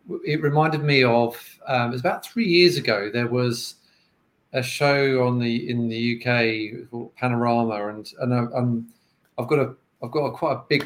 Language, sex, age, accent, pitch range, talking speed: English, male, 40-59, British, 115-130 Hz, 195 wpm